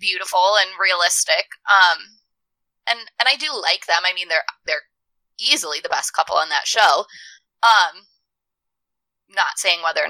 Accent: American